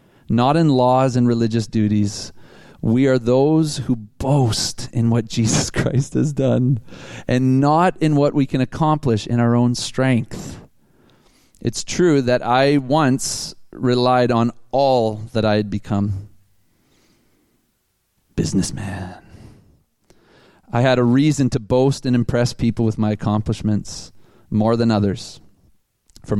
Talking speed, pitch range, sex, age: 130 wpm, 110-130 Hz, male, 40-59